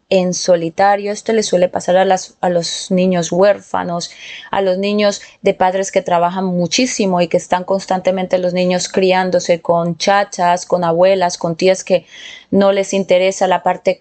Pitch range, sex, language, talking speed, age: 175-200 Hz, female, Spanish, 165 wpm, 20-39